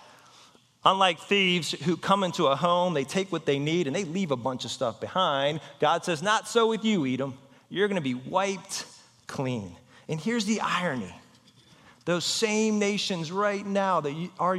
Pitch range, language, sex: 130-190 Hz, English, male